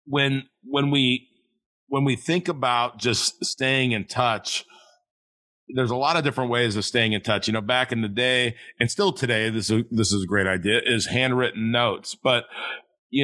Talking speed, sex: 190 wpm, male